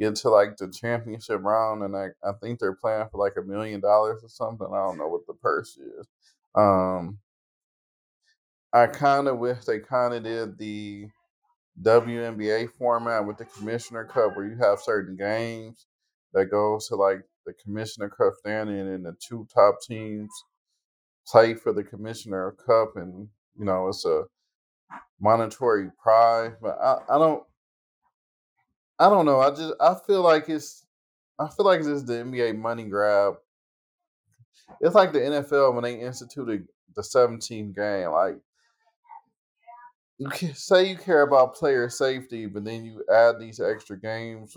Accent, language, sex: American, English, male